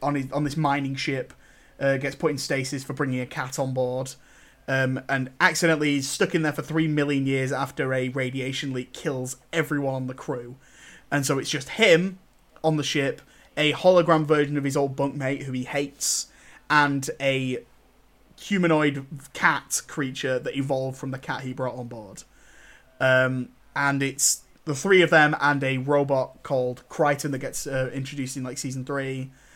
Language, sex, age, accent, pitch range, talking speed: English, male, 20-39, British, 135-155 Hz, 185 wpm